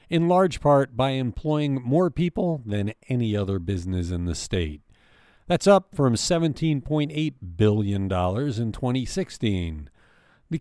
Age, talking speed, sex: 50-69, 125 wpm, male